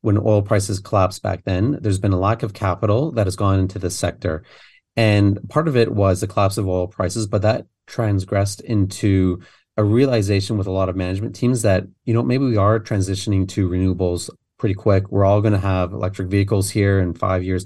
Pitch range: 90-110 Hz